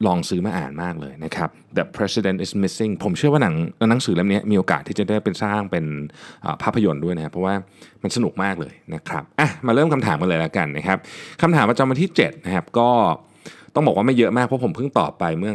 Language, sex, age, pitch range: Thai, male, 20-39, 80-115 Hz